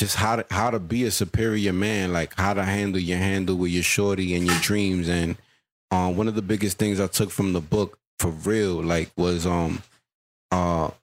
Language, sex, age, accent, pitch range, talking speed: English, male, 30-49, American, 85-100 Hz, 210 wpm